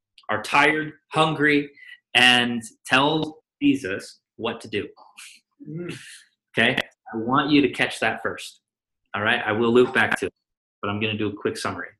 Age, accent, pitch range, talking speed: 20-39, American, 105-140 Hz, 165 wpm